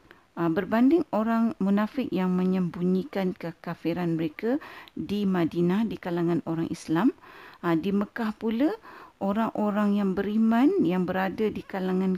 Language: Malay